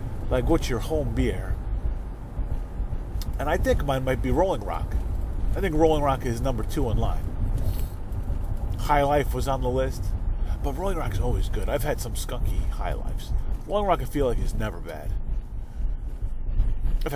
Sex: male